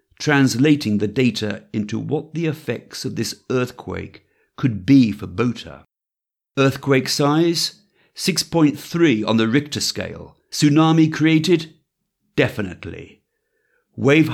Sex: male